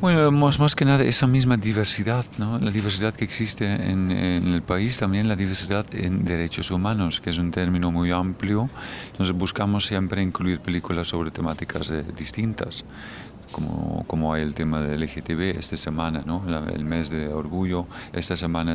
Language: Spanish